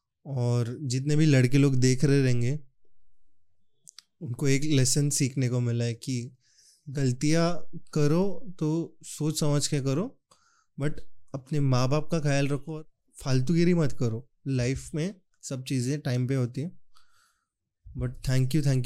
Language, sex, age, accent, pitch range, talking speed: Hindi, male, 20-39, native, 130-155 Hz, 145 wpm